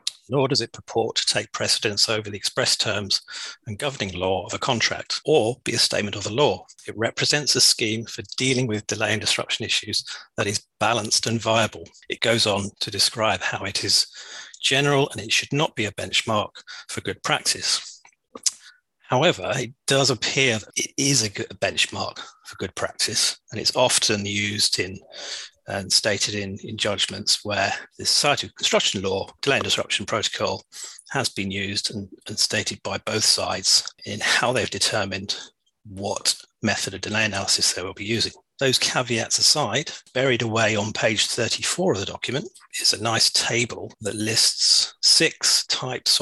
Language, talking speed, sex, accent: English, 175 wpm, male, British